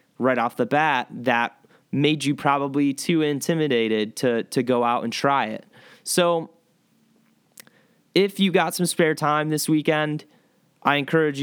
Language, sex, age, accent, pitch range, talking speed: English, male, 20-39, American, 125-170 Hz, 145 wpm